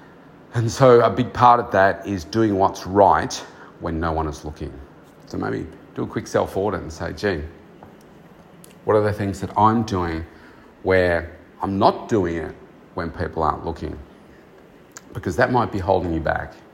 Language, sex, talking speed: English, male, 175 wpm